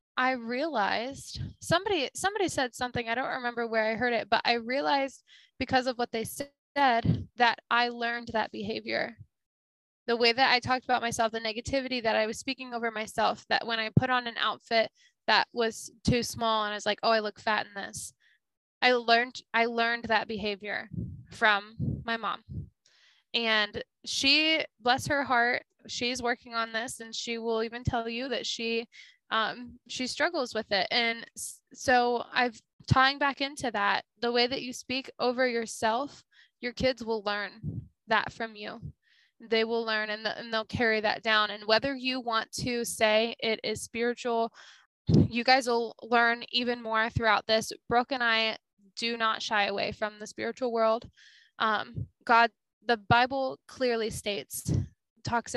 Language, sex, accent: English, female, American